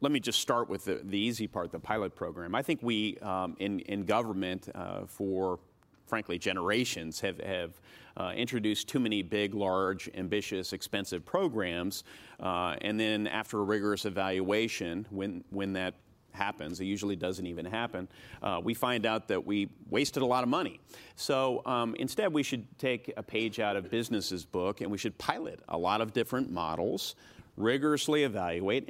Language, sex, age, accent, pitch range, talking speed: English, male, 40-59, American, 95-115 Hz, 175 wpm